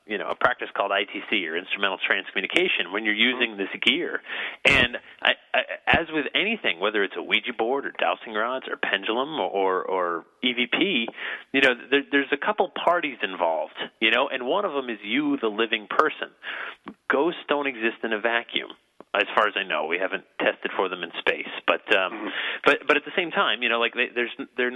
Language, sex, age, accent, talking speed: English, male, 30-49, American, 205 wpm